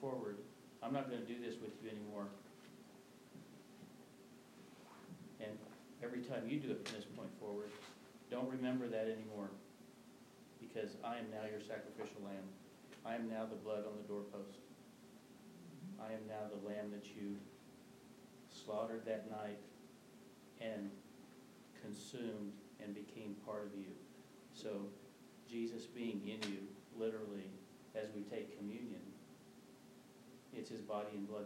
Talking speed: 135 wpm